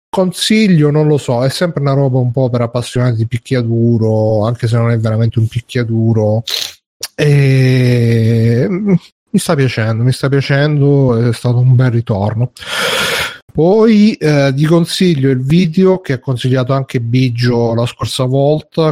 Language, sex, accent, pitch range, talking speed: Italian, male, native, 120-150 Hz, 150 wpm